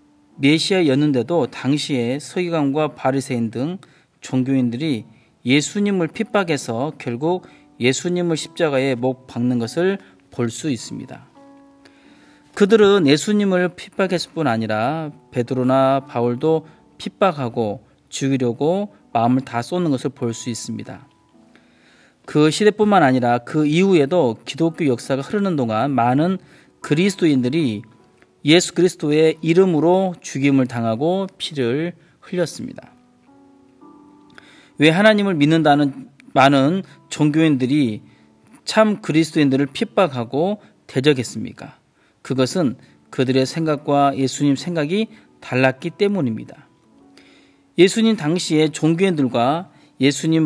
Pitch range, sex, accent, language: 130-180 Hz, male, native, Korean